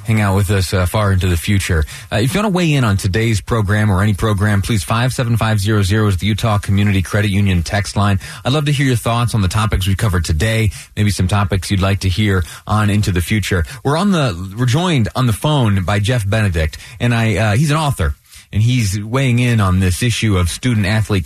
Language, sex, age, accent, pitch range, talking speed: English, male, 30-49, American, 100-135 Hz, 245 wpm